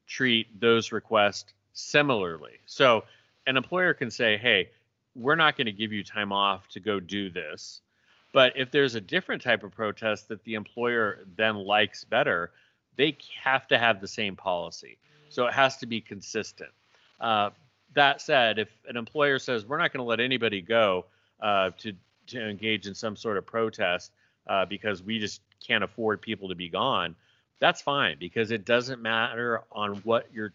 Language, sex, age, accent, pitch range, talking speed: English, male, 30-49, American, 100-120 Hz, 180 wpm